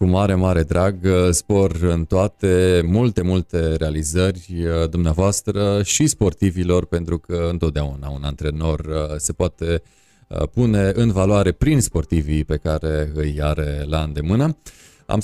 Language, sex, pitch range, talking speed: Romanian, male, 80-100 Hz, 125 wpm